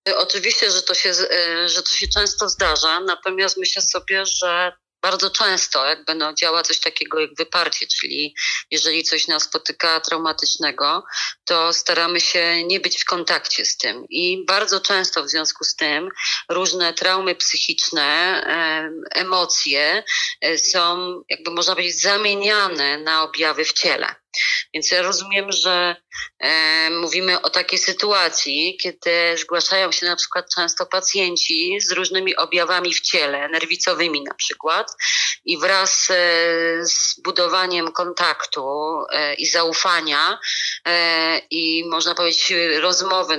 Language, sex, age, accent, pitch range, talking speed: Polish, female, 30-49, native, 160-185 Hz, 125 wpm